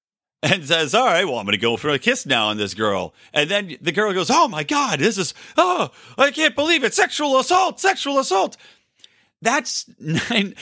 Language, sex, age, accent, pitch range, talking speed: English, male, 40-59, American, 125-190 Hz, 210 wpm